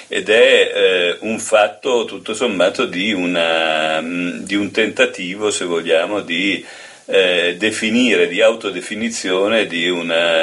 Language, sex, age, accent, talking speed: Italian, male, 40-59, native, 120 wpm